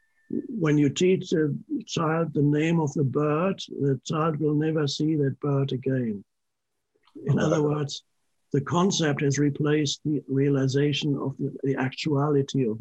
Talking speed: 145 wpm